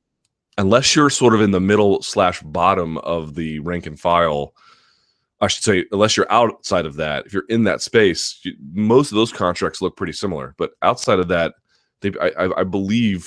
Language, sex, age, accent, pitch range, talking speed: English, male, 30-49, American, 85-110 Hz, 190 wpm